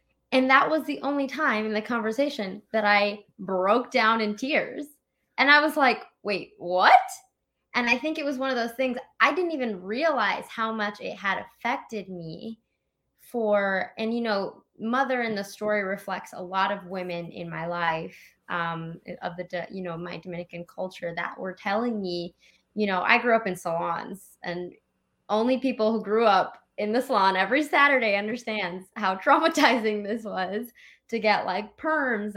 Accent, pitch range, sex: American, 185-240 Hz, female